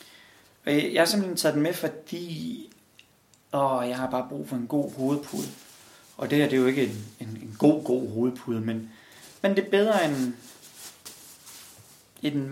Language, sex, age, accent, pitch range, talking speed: Danish, male, 30-49, native, 120-145 Hz, 175 wpm